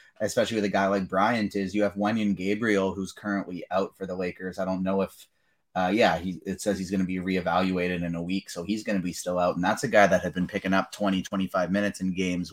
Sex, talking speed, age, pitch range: male, 265 wpm, 30-49, 90-105 Hz